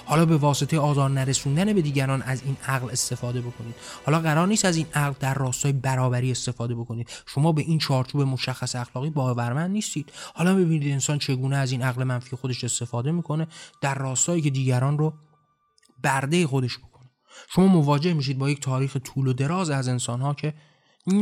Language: Persian